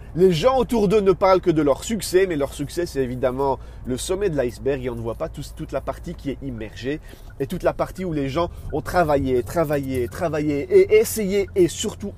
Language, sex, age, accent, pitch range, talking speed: French, male, 40-59, French, 105-170 Hz, 225 wpm